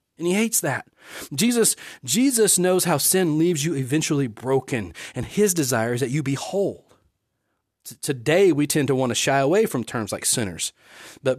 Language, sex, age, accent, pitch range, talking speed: English, male, 40-59, American, 130-210 Hz, 180 wpm